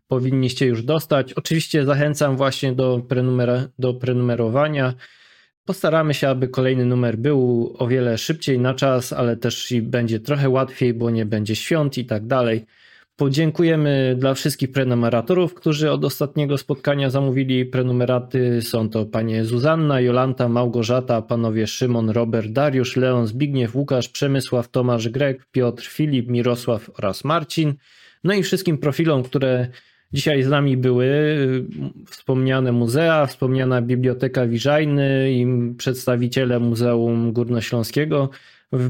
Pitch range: 120-140 Hz